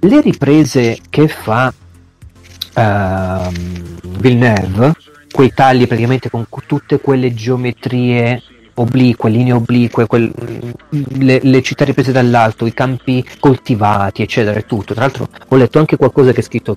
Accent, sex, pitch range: native, male, 110-140 Hz